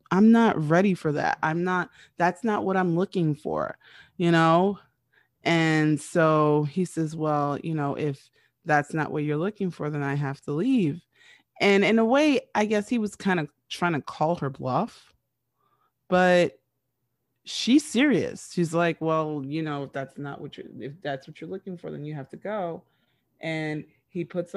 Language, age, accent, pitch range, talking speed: English, 30-49, American, 140-170 Hz, 185 wpm